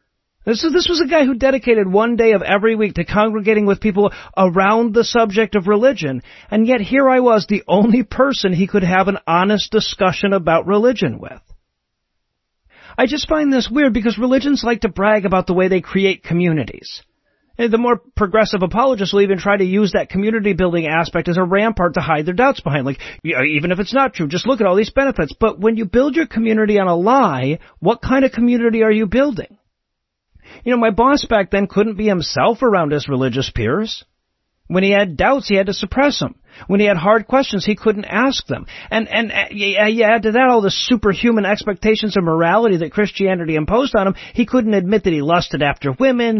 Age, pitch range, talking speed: 40-59, 195-235 Hz, 205 wpm